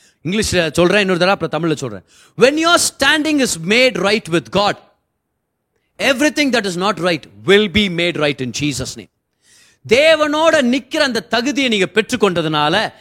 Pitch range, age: 160-225 Hz, 30-49